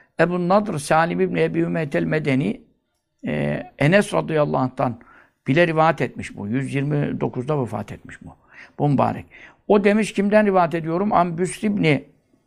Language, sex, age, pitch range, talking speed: Turkish, male, 60-79, 140-200 Hz, 130 wpm